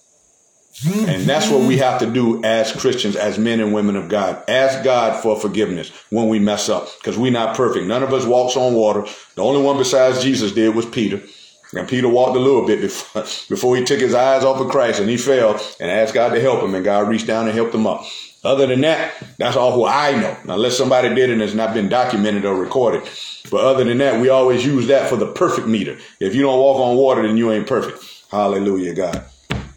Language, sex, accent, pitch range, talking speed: English, male, American, 105-130 Hz, 230 wpm